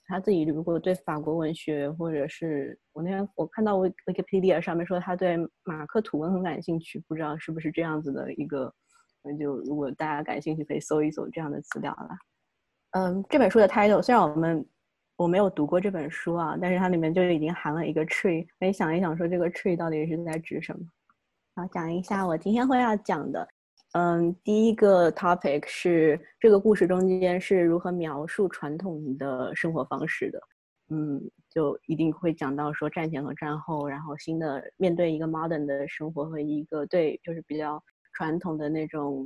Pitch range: 155-180 Hz